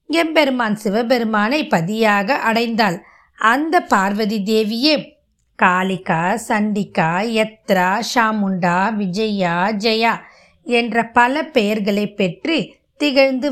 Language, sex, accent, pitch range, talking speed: Tamil, female, native, 200-275 Hz, 80 wpm